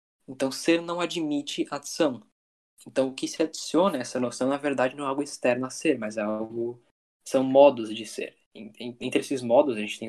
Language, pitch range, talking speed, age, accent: Portuguese, 120-140 Hz, 200 wpm, 10-29, Brazilian